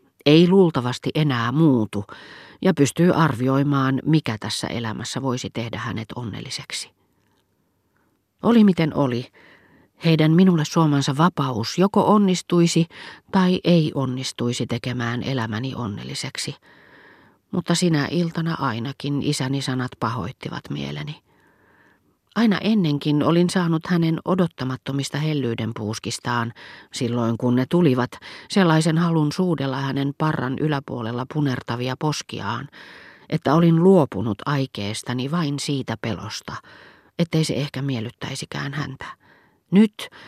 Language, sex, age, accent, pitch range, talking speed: Finnish, female, 40-59, native, 125-160 Hz, 105 wpm